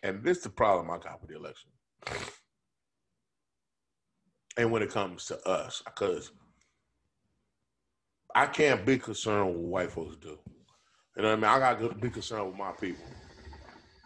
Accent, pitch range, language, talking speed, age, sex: American, 110-155 Hz, English, 165 wpm, 30-49, male